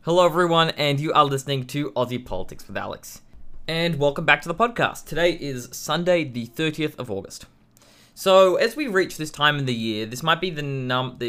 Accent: Australian